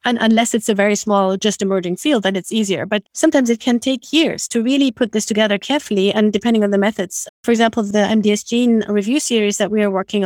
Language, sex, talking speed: English, female, 235 wpm